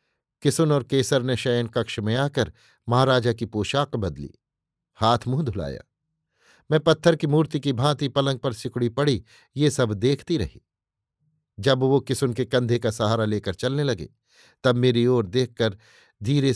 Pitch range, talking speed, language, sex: 120-145 Hz, 160 wpm, Hindi, male